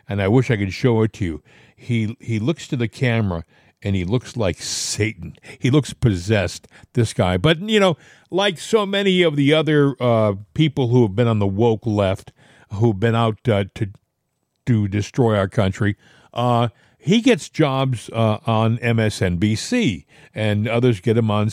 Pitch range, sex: 110-145 Hz, male